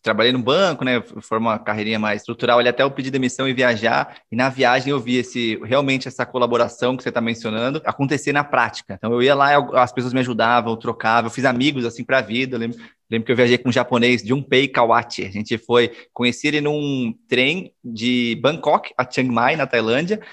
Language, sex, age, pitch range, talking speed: Portuguese, male, 20-39, 115-145 Hz, 225 wpm